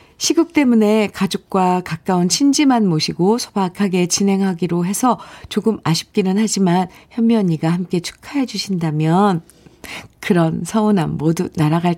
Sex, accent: female, native